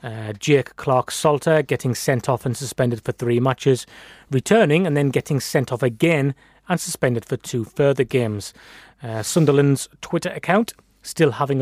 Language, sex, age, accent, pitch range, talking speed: English, male, 30-49, British, 120-150 Hz, 160 wpm